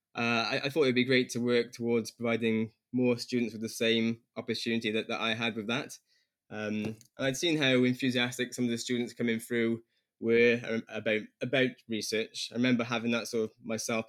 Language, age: English, 10-29